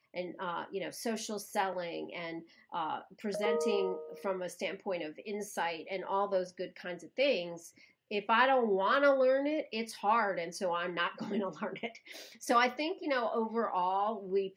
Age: 40-59